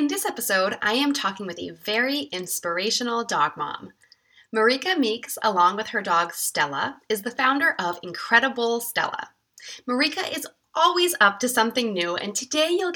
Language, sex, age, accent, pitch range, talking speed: English, female, 20-39, American, 210-285 Hz, 160 wpm